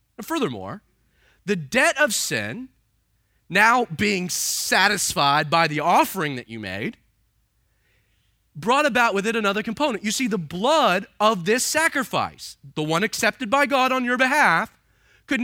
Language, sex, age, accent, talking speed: English, male, 30-49, American, 145 wpm